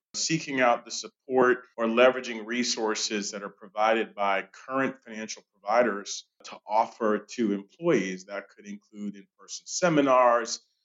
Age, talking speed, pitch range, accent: 40-59, 125 wpm, 105-130 Hz, American